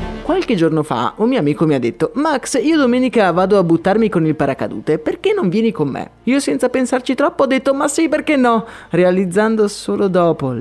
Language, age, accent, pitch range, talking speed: Italian, 30-49, native, 160-225 Hz, 205 wpm